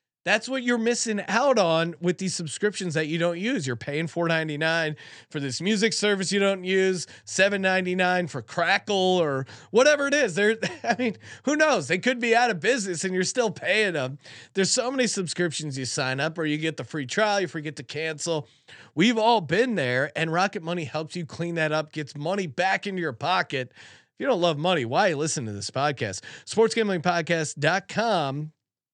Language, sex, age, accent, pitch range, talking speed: English, male, 30-49, American, 140-195 Hz, 195 wpm